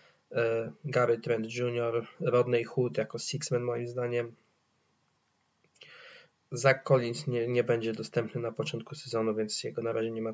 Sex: male